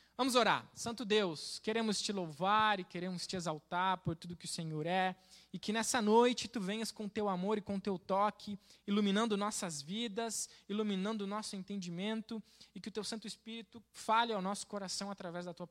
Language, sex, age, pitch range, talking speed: Portuguese, male, 20-39, 180-230 Hz, 190 wpm